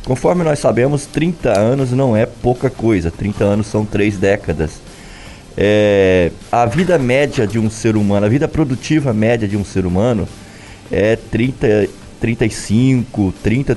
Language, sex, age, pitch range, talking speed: Portuguese, male, 20-39, 100-130 Hz, 150 wpm